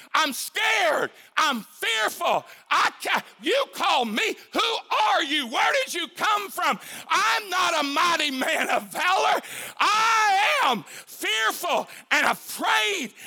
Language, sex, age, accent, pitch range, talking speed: English, male, 50-69, American, 295-390 Hz, 130 wpm